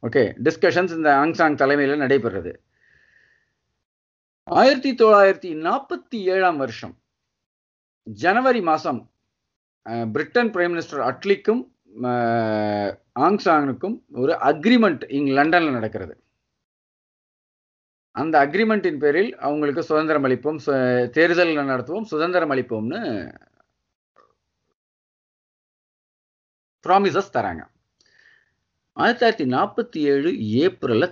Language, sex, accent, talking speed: Tamil, male, native, 60 wpm